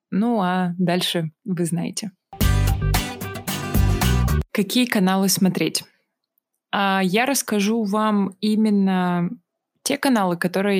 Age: 20-39